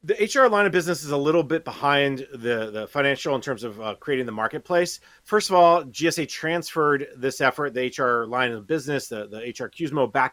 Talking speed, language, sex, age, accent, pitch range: 215 wpm, English, male, 30-49, American, 130-170 Hz